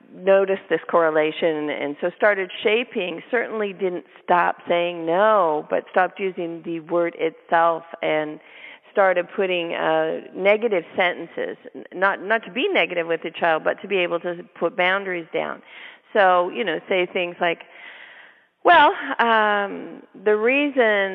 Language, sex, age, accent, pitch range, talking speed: English, female, 40-59, American, 170-205 Hz, 140 wpm